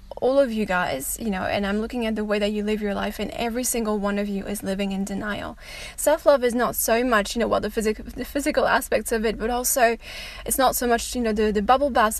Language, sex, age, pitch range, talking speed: English, female, 10-29, 210-275 Hz, 270 wpm